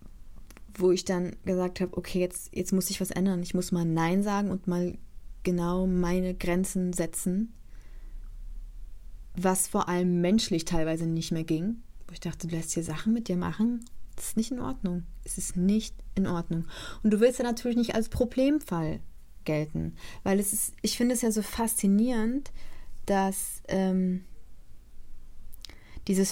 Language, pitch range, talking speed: German, 175-215 Hz, 165 wpm